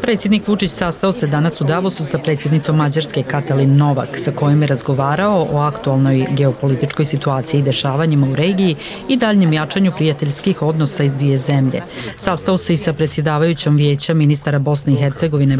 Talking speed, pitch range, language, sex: 160 wpm, 140-170 Hz, Croatian, female